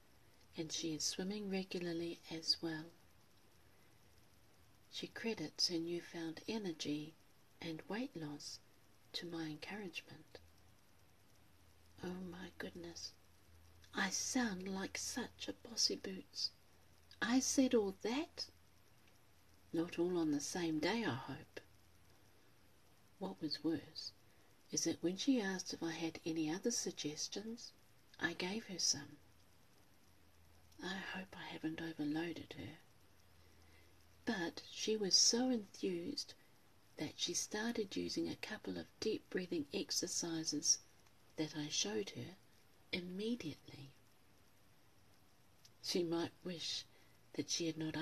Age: 50-69